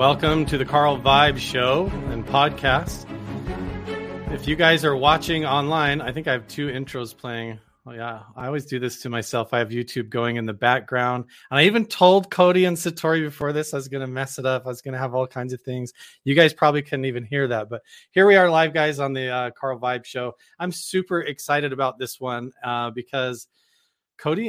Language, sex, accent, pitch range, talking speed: English, male, American, 125-150 Hz, 220 wpm